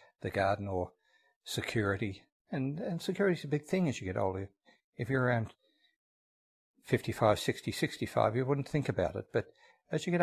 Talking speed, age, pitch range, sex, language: 170 wpm, 60-79, 110-135 Hz, male, English